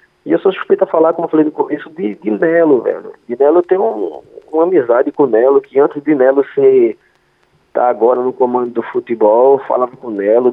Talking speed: 220 wpm